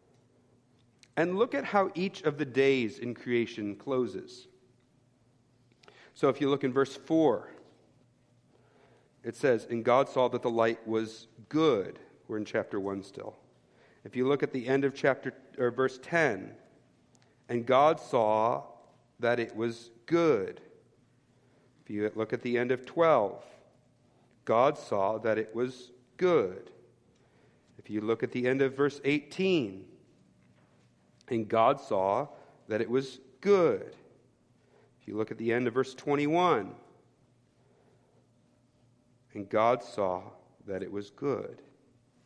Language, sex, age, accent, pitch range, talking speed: English, male, 50-69, American, 120-145 Hz, 140 wpm